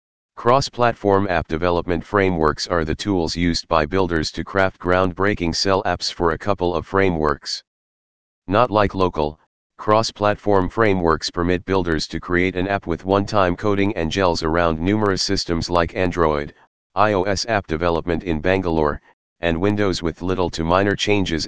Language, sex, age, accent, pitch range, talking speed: English, male, 40-59, American, 85-95 Hz, 155 wpm